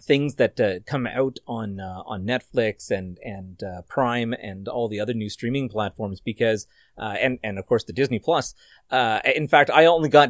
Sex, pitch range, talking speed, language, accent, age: male, 105-135 Hz, 205 wpm, English, American, 30-49